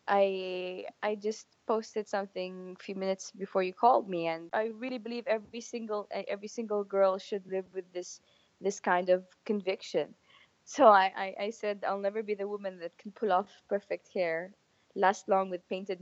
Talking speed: 185 wpm